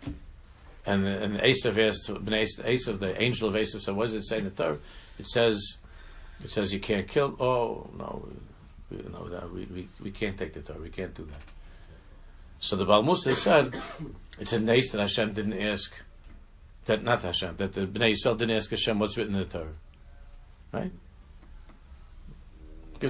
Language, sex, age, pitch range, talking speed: English, male, 60-79, 80-115 Hz, 175 wpm